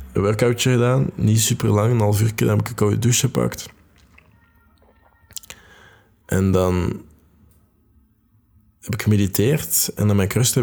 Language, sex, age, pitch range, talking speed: Dutch, male, 20-39, 95-110 Hz, 145 wpm